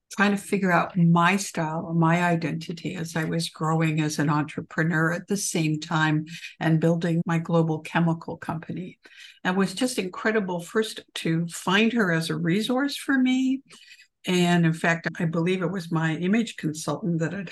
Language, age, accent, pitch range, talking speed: English, 60-79, American, 160-195 Hz, 170 wpm